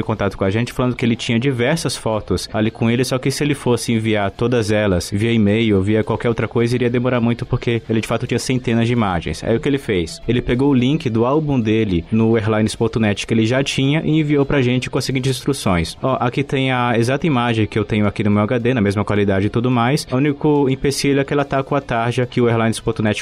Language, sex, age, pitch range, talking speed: English, male, 20-39, 110-130 Hz, 255 wpm